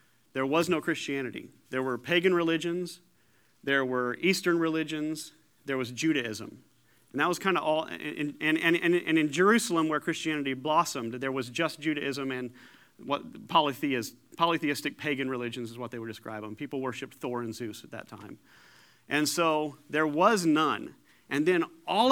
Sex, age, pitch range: male, 40-59, 130-165 Hz